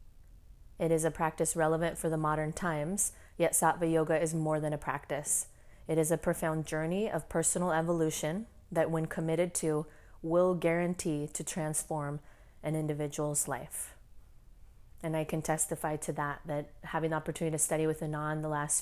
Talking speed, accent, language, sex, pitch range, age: 165 wpm, American, English, female, 150-170 Hz, 20-39